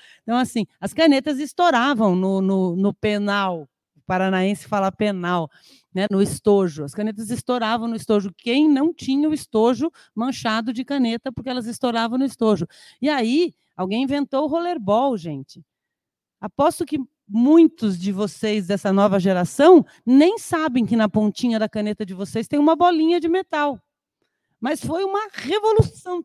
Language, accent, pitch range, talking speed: Portuguese, Brazilian, 190-275 Hz, 155 wpm